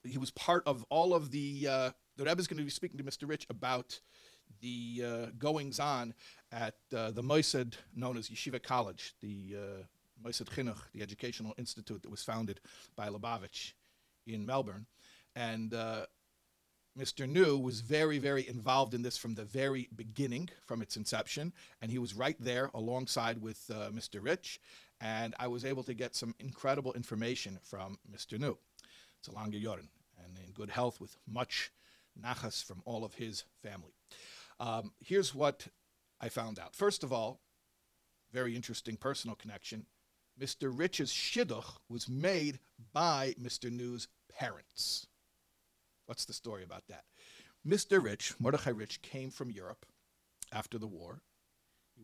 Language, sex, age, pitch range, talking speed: English, male, 50-69, 105-135 Hz, 155 wpm